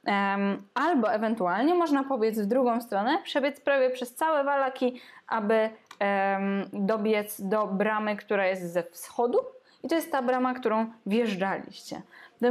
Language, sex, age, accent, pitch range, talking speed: Polish, female, 10-29, native, 210-260 Hz, 145 wpm